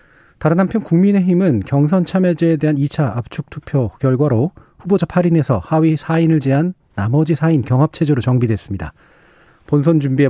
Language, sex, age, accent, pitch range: Korean, male, 40-59, native, 120-165 Hz